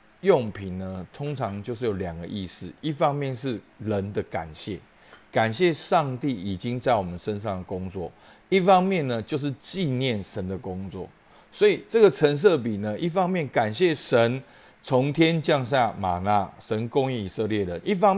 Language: Chinese